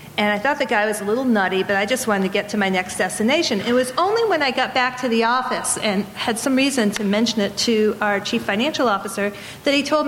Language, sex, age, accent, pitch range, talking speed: English, female, 50-69, American, 215-280 Hz, 260 wpm